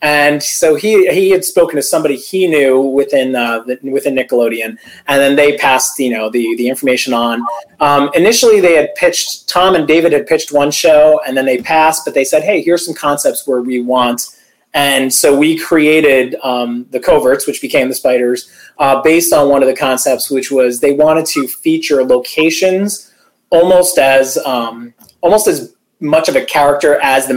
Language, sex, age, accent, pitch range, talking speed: English, male, 30-49, American, 130-160 Hz, 190 wpm